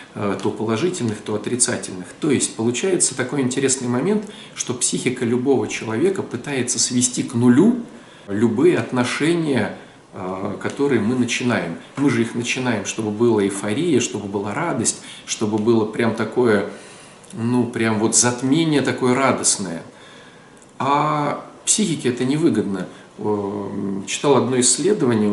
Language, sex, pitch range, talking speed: Russian, male, 110-130 Hz, 120 wpm